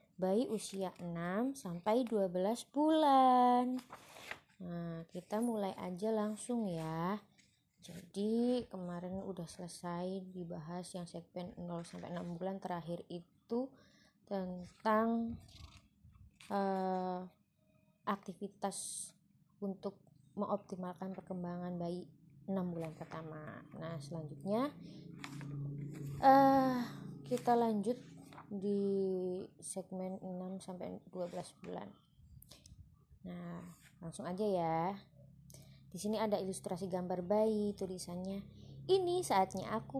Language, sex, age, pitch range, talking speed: Indonesian, female, 20-39, 175-215 Hz, 90 wpm